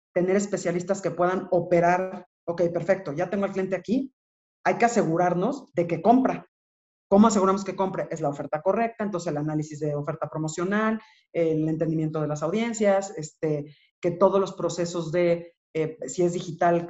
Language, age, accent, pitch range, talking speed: Spanish, 40-59, Mexican, 165-195 Hz, 165 wpm